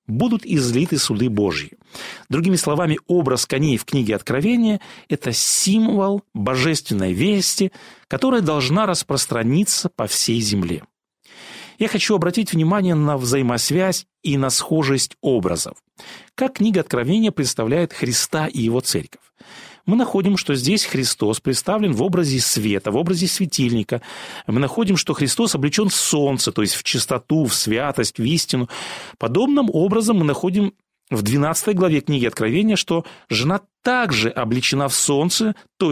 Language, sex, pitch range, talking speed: Russian, male, 130-195 Hz, 140 wpm